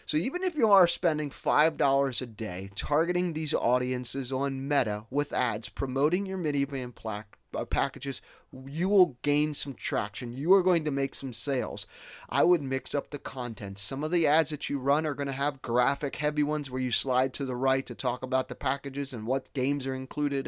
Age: 30-49